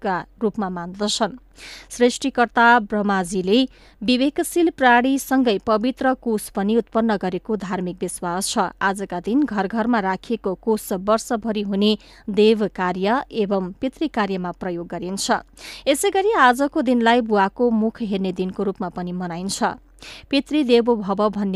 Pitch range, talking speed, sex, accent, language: 195-240 Hz, 115 wpm, female, Indian, English